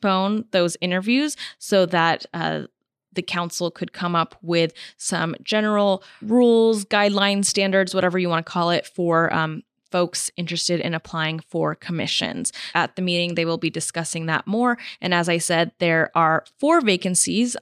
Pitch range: 175-215 Hz